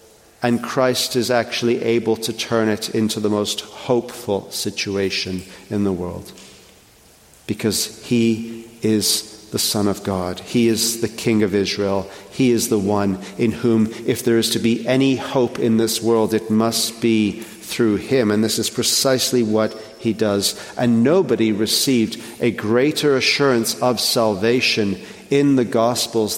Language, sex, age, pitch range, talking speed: English, male, 40-59, 110-160 Hz, 155 wpm